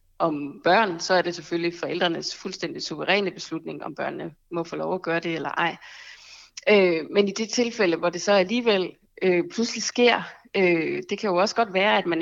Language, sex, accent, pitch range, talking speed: Danish, female, native, 175-215 Hz, 200 wpm